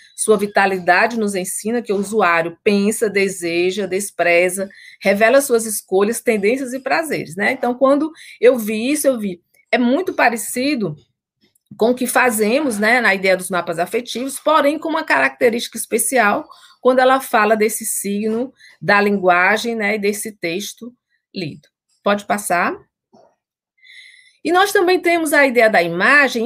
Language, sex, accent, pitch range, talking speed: Portuguese, female, Brazilian, 205-280 Hz, 145 wpm